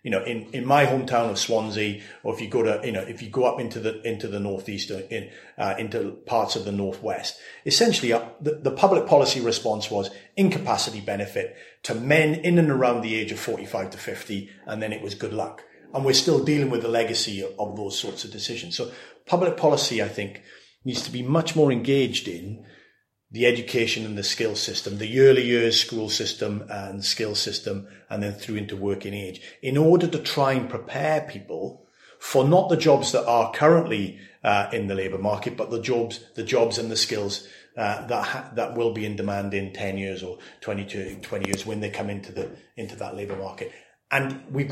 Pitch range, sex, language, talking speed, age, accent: 100-130 Hz, male, English, 210 wpm, 30-49, British